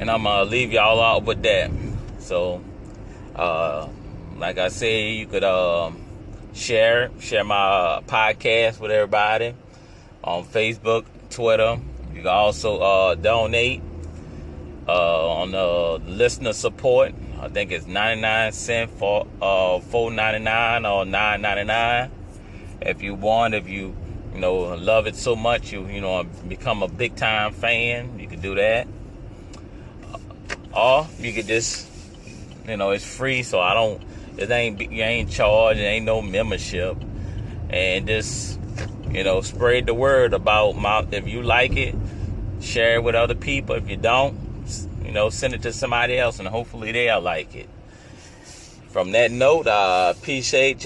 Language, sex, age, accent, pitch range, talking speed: English, male, 30-49, American, 95-115 Hz, 155 wpm